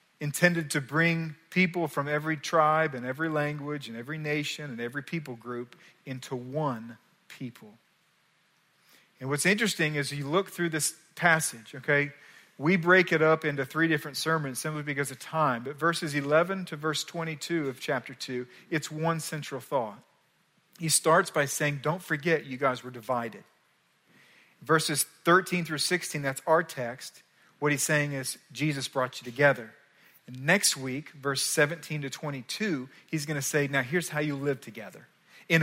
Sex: male